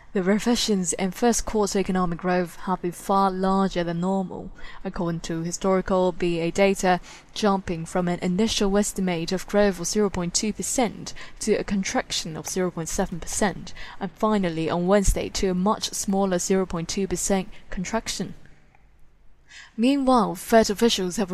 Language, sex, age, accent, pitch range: Chinese, female, 10-29, British, 180-210 Hz